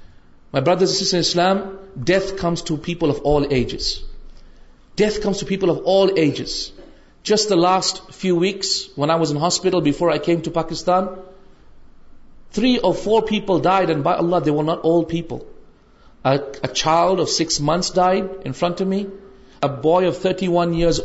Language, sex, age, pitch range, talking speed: Urdu, male, 40-59, 150-190 Hz, 180 wpm